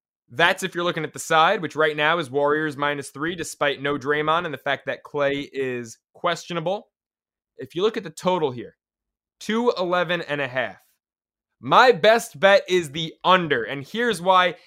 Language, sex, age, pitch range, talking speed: English, male, 20-39, 150-190 Hz, 195 wpm